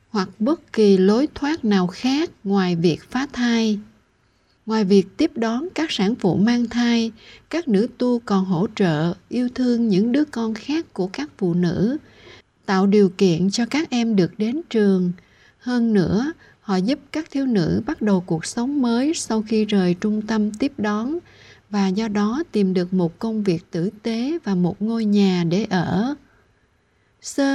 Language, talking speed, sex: Vietnamese, 175 wpm, female